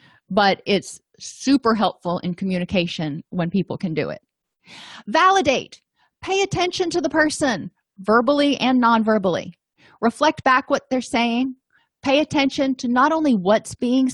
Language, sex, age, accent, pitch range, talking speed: English, female, 30-49, American, 190-260 Hz, 140 wpm